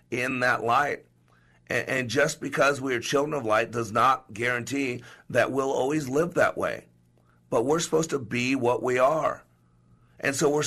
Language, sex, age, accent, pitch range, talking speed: English, male, 50-69, American, 95-140 Hz, 180 wpm